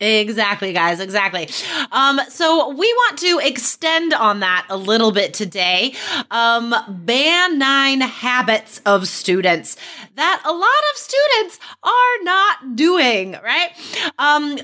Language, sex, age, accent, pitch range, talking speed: English, female, 20-39, American, 200-310 Hz, 125 wpm